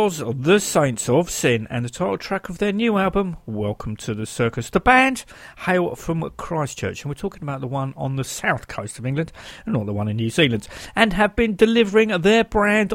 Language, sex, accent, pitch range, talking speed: English, male, British, 125-205 Hz, 215 wpm